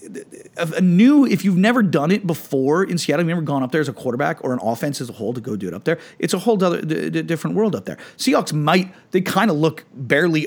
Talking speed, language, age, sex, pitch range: 270 wpm, English, 40-59, male, 130-185 Hz